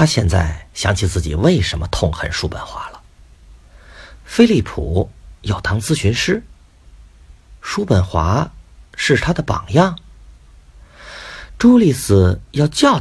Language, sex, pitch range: Chinese, male, 75-110 Hz